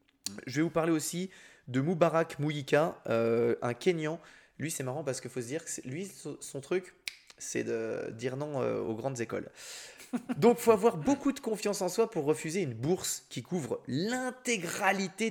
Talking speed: 185 wpm